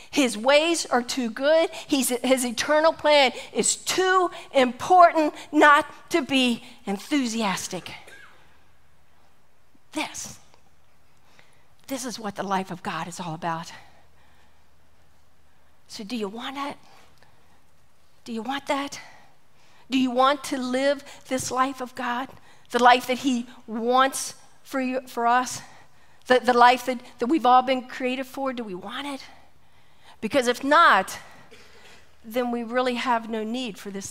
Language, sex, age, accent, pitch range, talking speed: English, female, 50-69, American, 190-260 Hz, 135 wpm